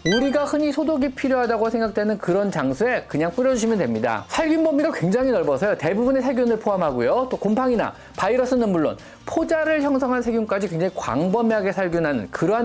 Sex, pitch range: male, 190-275 Hz